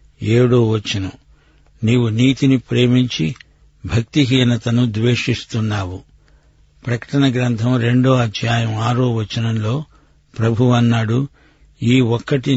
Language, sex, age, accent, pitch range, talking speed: Telugu, male, 60-79, native, 115-130 Hz, 80 wpm